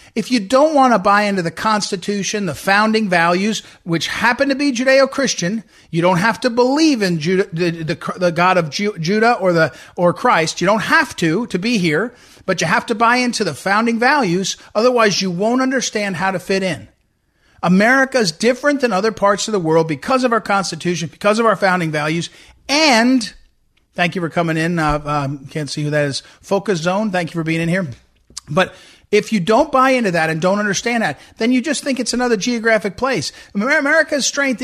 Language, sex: English, male